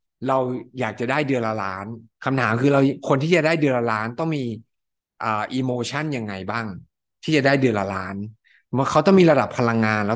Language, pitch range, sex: Thai, 110-135 Hz, male